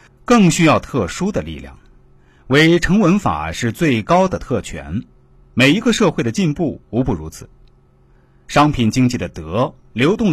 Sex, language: male, Chinese